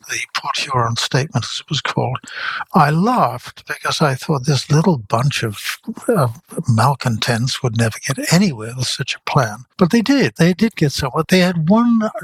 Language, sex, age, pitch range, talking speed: English, male, 60-79, 125-165 Hz, 180 wpm